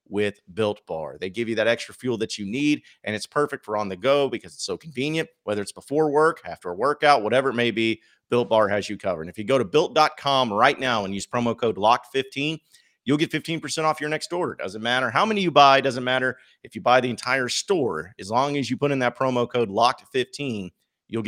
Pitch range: 110-145 Hz